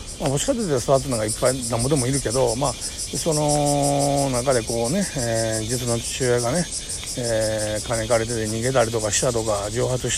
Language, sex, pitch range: Japanese, male, 115-155 Hz